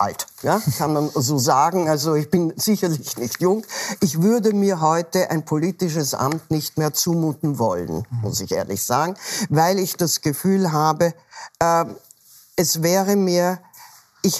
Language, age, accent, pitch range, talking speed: German, 60-79, German, 145-185 Hz, 150 wpm